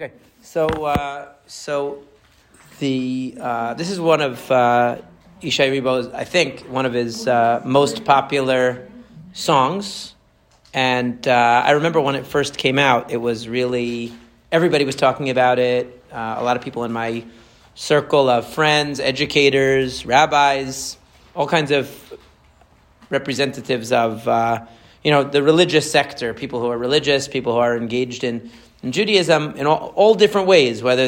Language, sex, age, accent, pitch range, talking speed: English, male, 30-49, American, 120-150 Hz, 155 wpm